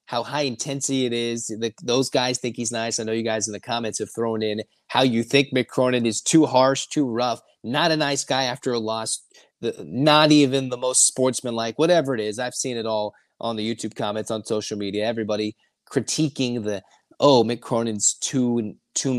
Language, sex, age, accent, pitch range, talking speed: English, male, 30-49, American, 110-135 Hz, 200 wpm